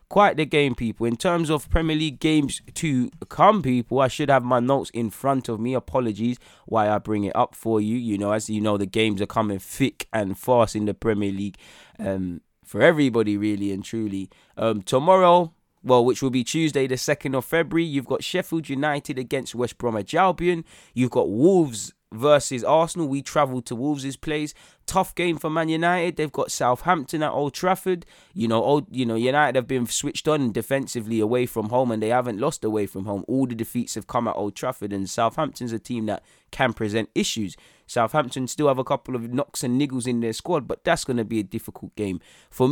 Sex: male